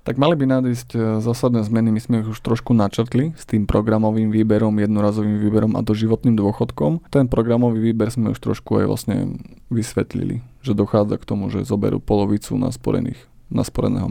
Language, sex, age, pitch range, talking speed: Slovak, male, 20-39, 105-125 Hz, 175 wpm